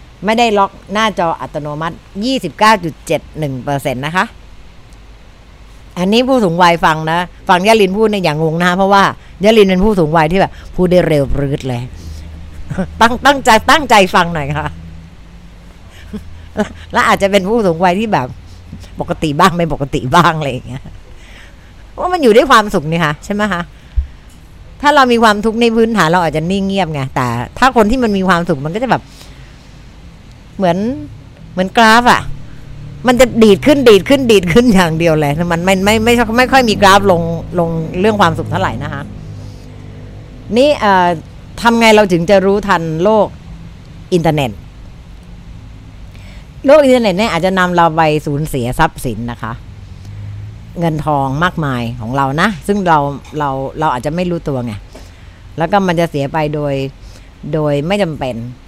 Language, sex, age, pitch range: Thai, female, 60-79, 130-200 Hz